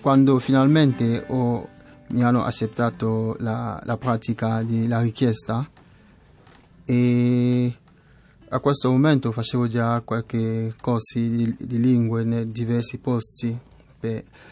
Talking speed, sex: 110 wpm, male